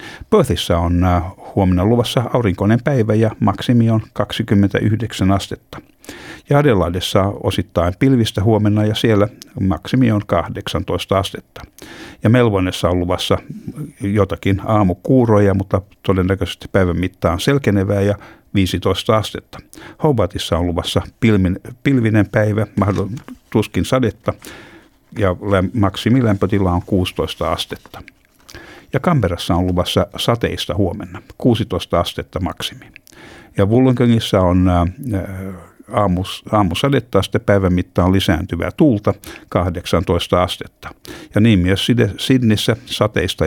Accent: native